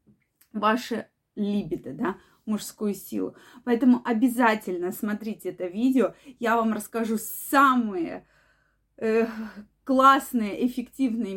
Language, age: Russian, 20-39